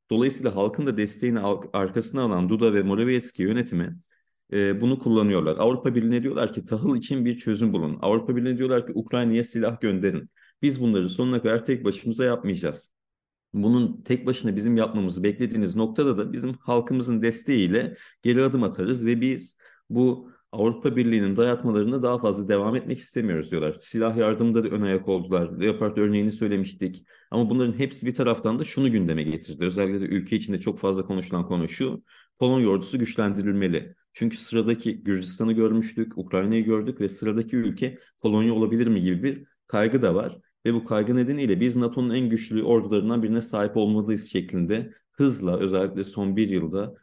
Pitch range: 100-120 Hz